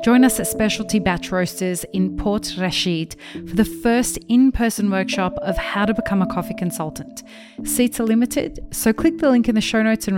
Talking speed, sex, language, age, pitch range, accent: 195 wpm, female, English, 30-49, 190-230 Hz, Australian